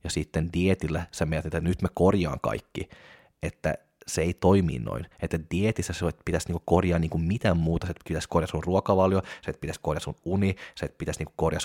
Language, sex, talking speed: Finnish, male, 195 wpm